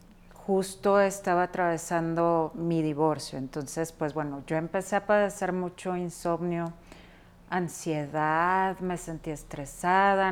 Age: 40-59